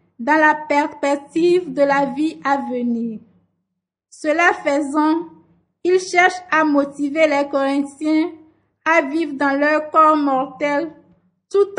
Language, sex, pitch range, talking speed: French, female, 275-330 Hz, 115 wpm